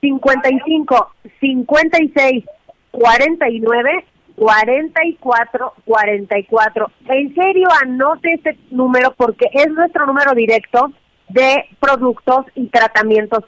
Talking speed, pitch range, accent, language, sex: 100 wpm, 220-275 Hz, Mexican, Spanish, female